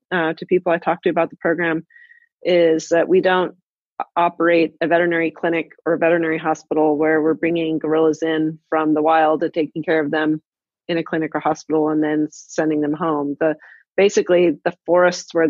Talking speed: 190 wpm